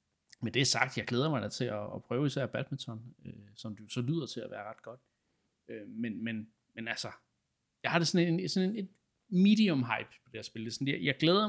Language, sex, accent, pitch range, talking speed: Danish, male, native, 110-130 Hz, 225 wpm